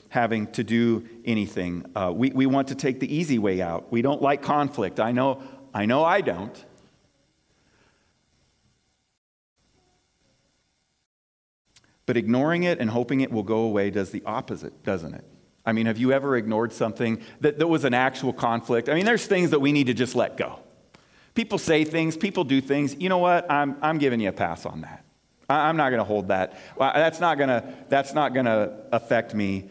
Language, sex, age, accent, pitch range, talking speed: English, male, 40-59, American, 110-155 Hz, 190 wpm